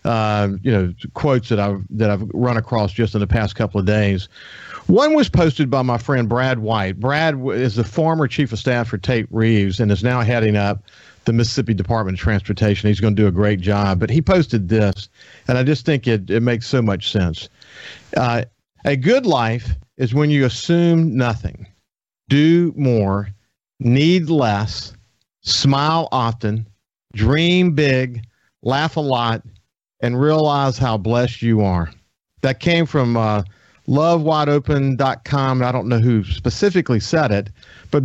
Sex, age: male, 50-69